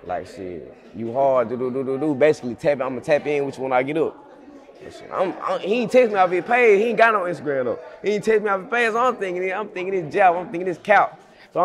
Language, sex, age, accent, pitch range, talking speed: English, male, 20-39, American, 140-215 Hz, 280 wpm